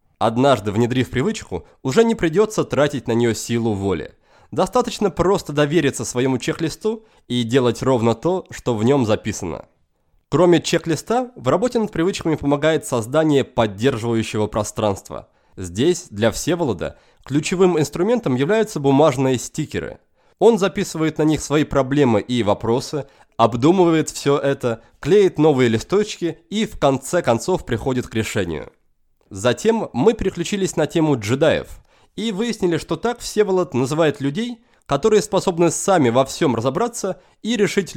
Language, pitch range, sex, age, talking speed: Russian, 125-185 Hz, male, 20-39, 135 wpm